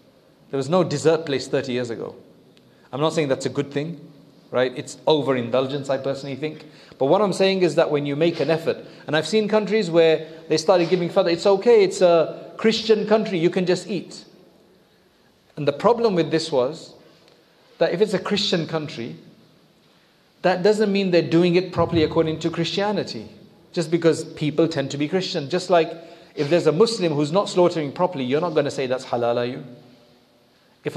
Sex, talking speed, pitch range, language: male, 195 wpm, 145-180 Hz, English